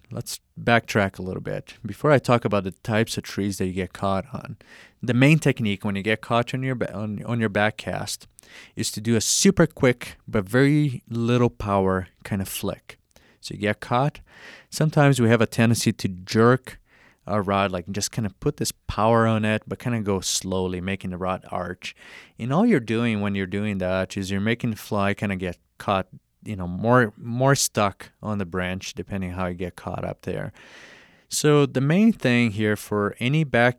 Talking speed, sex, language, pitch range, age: 200 wpm, male, English, 95-120 Hz, 30-49